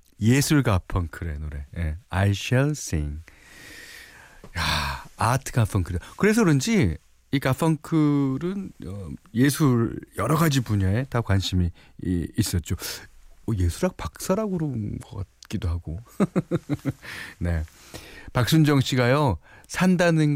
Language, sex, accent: Korean, male, native